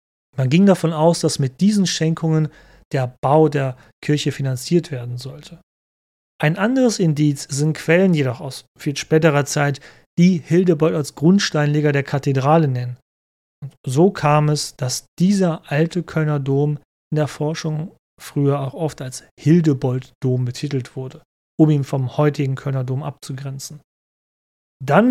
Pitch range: 135-165 Hz